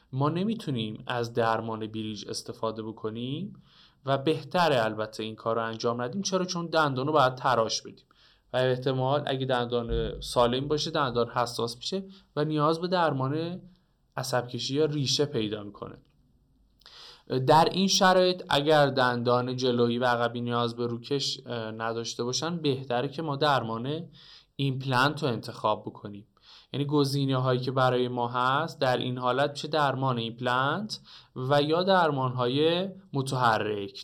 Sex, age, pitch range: male, 20-39, 120-150 Hz